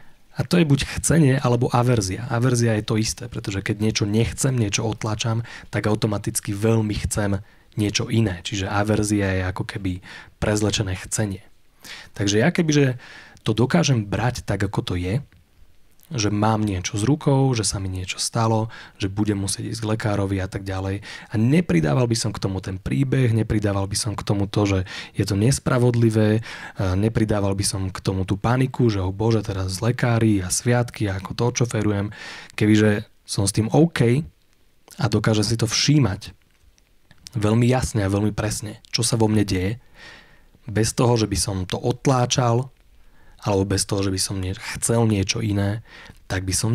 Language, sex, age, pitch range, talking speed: Slovak, male, 30-49, 100-115 Hz, 175 wpm